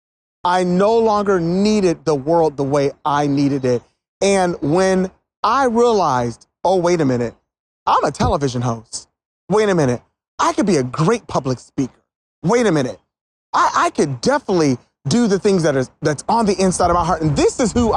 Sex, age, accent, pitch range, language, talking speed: male, 30-49, American, 160-255 Hz, English, 185 wpm